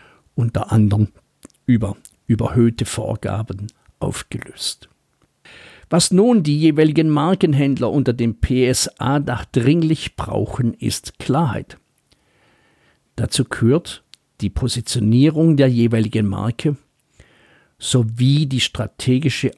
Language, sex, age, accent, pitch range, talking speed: German, male, 50-69, German, 110-145 Hz, 85 wpm